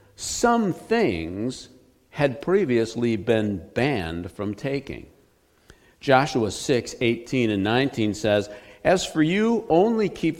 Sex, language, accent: male, English, American